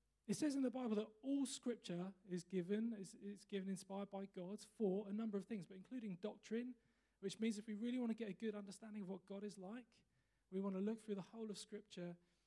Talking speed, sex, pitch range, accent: 230 wpm, male, 180-220 Hz, British